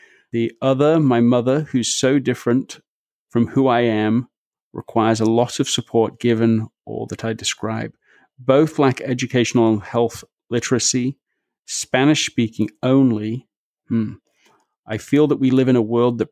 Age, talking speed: 40-59, 145 wpm